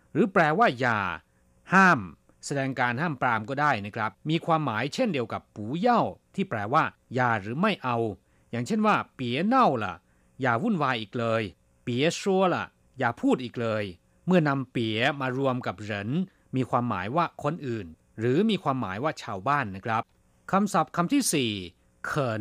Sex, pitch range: male, 110-170 Hz